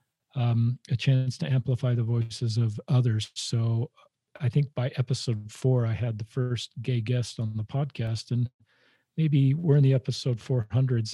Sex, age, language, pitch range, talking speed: male, 40-59, English, 120-130 Hz, 165 wpm